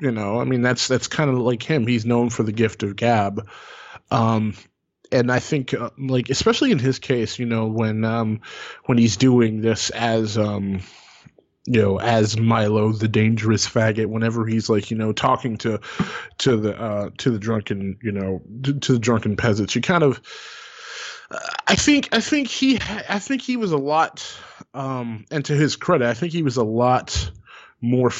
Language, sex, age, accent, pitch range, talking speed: English, male, 20-39, American, 115-135 Hz, 190 wpm